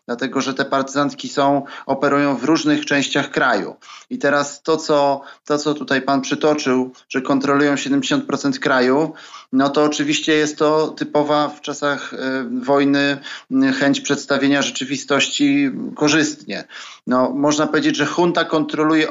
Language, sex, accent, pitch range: Polish, male, native, 135-150 Hz